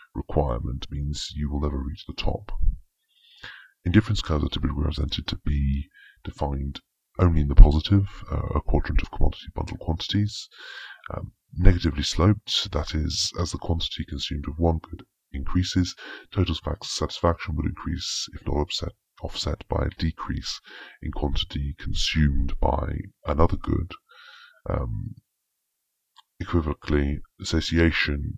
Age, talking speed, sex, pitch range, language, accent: 30-49, 125 wpm, female, 75-95 Hz, English, British